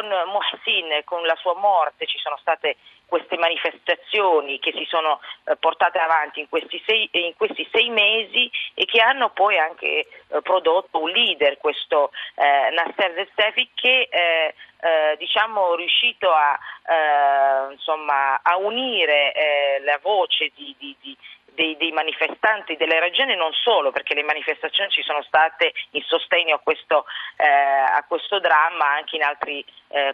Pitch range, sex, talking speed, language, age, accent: 145-180 Hz, female, 155 wpm, Italian, 40-59, native